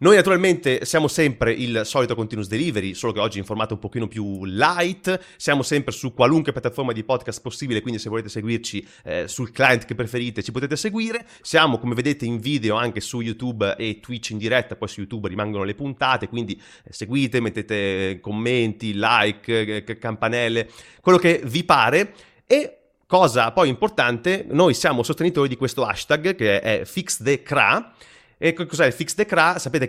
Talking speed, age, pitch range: 170 wpm, 30-49, 110-145 Hz